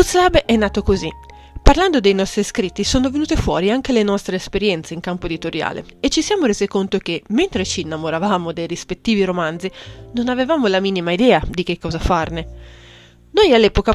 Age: 30-49